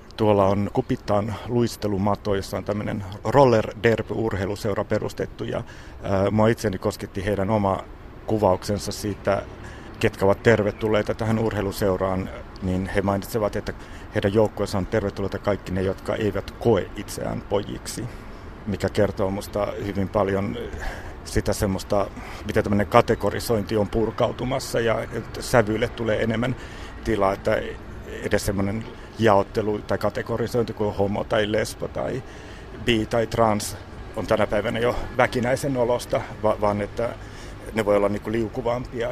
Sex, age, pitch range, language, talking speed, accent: male, 60-79, 100-115 Hz, Finnish, 120 wpm, native